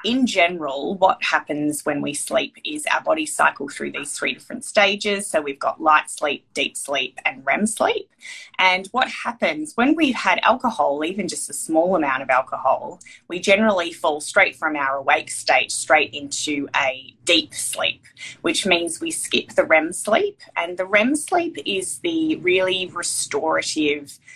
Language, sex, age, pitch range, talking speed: English, female, 20-39, 150-245 Hz, 170 wpm